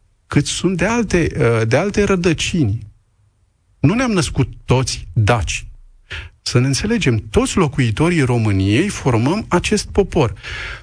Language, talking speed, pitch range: Romanian, 110 wpm, 110-150 Hz